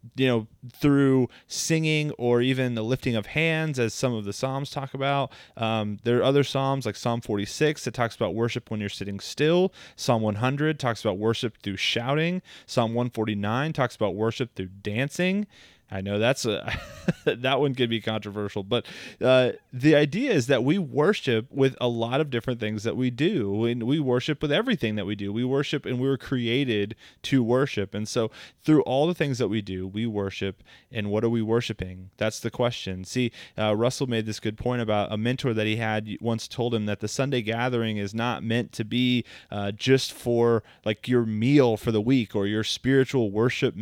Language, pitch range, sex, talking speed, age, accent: English, 110-135 Hz, male, 200 wpm, 30-49, American